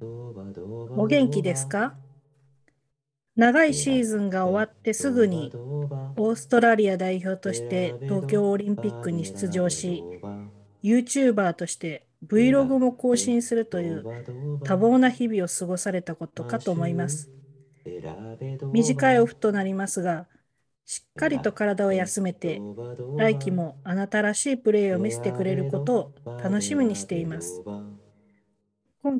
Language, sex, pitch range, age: Japanese, female, 145-215 Hz, 40-59